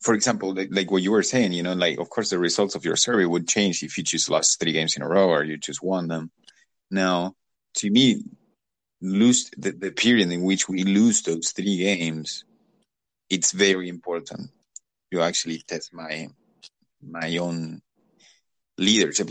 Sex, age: male, 30-49